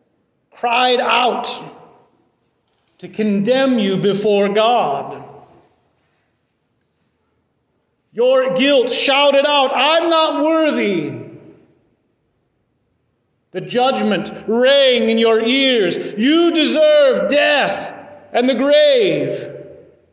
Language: English